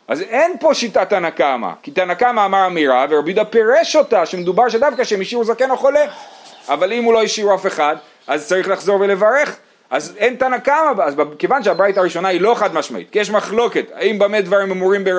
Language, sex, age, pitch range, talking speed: Hebrew, male, 30-49, 150-230 Hz, 195 wpm